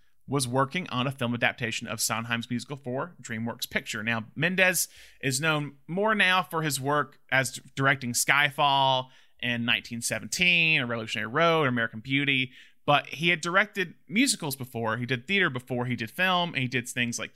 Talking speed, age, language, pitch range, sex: 175 wpm, 30-49, English, 120-150 Hz, male